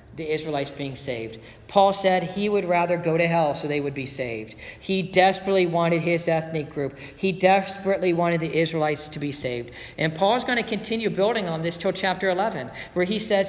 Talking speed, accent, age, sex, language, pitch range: 205 wpm, American, 50-69, male, English, 150-195 Hz